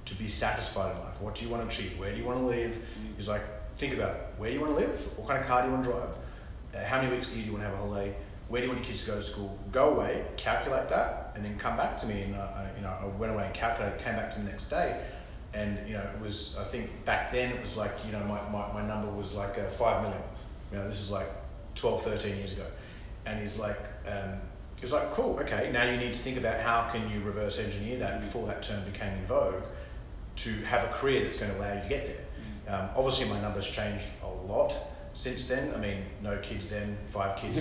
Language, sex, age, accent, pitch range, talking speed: English, male, 30-49, Australian, 100-115 Hz, 270 wpm